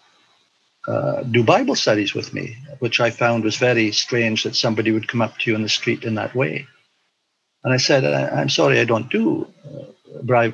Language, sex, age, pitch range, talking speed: English, male, 60-79, 110-135 Hz, 205 wpm